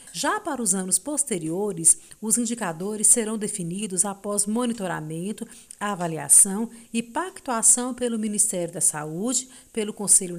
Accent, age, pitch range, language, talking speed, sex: Brazilian, 50-69, 190-265 Hz, Portuguese, 115 wpm, female